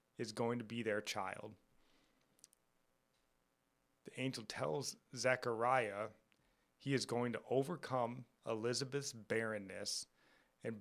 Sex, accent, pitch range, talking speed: male, American, 110-135 Hz, 100 wpm